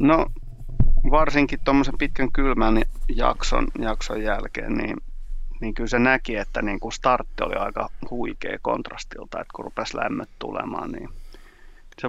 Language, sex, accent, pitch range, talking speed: Finnish, male, native, 115-130 Hz, 135 wpm